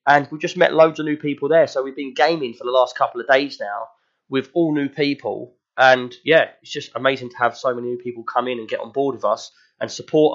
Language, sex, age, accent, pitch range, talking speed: English, male, 20-39, British, 120-160 Hz, 260 wpm